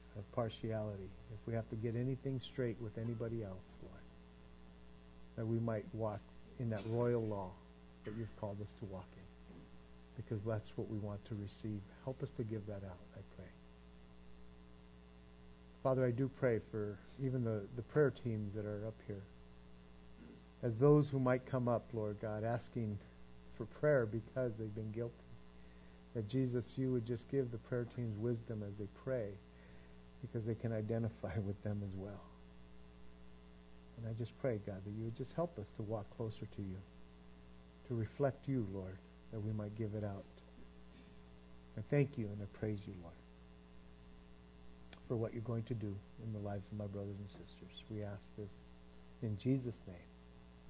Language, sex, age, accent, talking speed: English, male, 50-69, American, 175 wpm